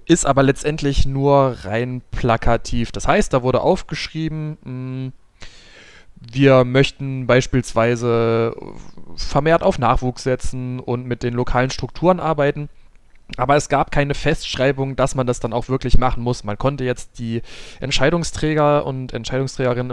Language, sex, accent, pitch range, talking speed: German, male, German, 115-150 Hz, 130 wpm